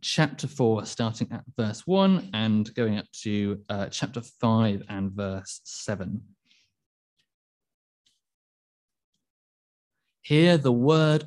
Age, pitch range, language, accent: 30-49, 105-145 Hz, English, British